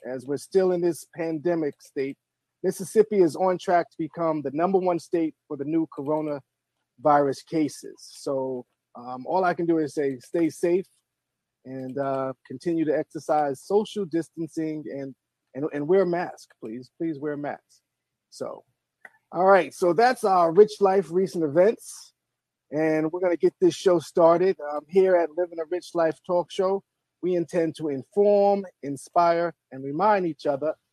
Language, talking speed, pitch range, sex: English, 165 wpm, 145-185 Hz, male